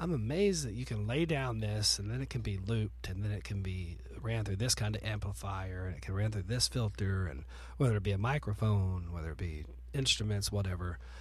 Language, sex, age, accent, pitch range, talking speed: English, male, 40-59, American, 85-110 Hz, 230 wpm